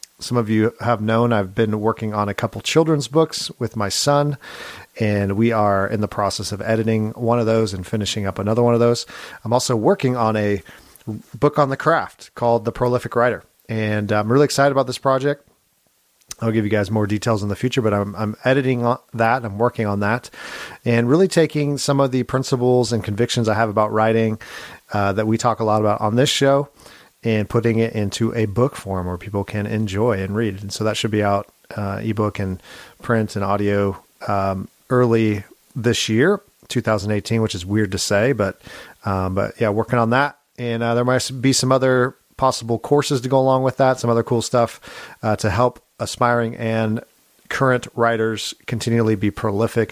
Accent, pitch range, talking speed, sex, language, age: American, 105-125 Hz, 200 wpm, male, English, 40-59